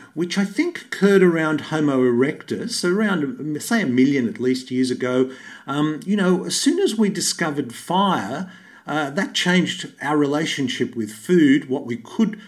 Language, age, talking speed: English, 50-69, 165 wpm